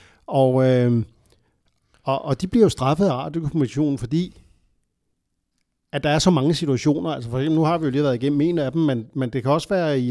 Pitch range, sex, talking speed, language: 130-165 Hz, male, 220 wpm, Danish